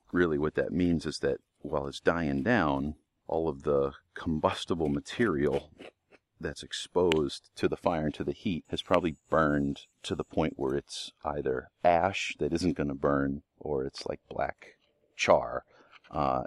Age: 40-59